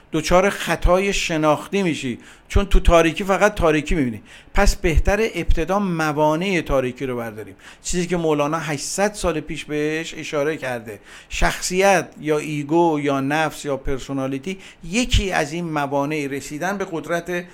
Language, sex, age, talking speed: Persian, male, 50-69, 135 wpm